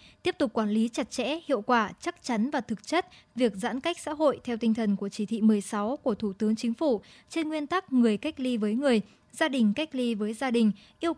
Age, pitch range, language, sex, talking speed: 10-29, 225-290 Hz, Vietnamese, male, 245 wpm